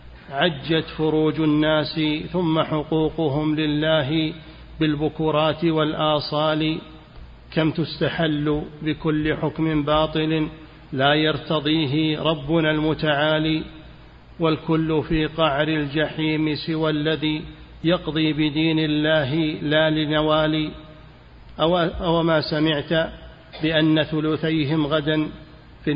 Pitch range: 150-160 Hz